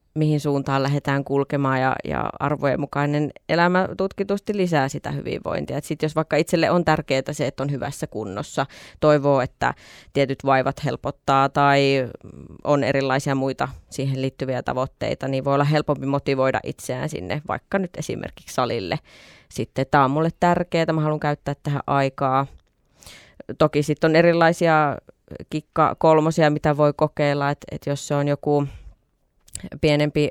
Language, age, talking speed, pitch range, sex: Finnish, 20-39, 145 wpm, 135-155 Hz, female